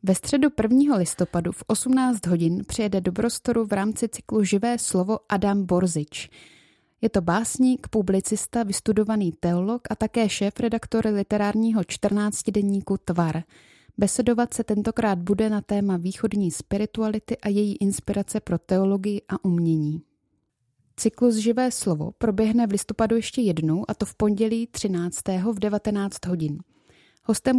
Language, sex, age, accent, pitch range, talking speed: Czech, female, 20-39, native, 185-225 Hz, 135 wpm